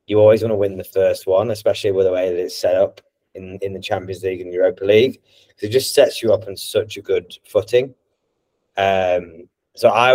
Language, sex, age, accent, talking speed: English, male, 20-39, British, 220 wpm